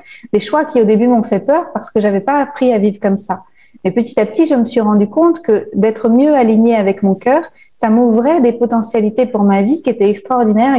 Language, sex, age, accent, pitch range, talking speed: French, female, 30-49, French, 210-255 Hz, 245 wpm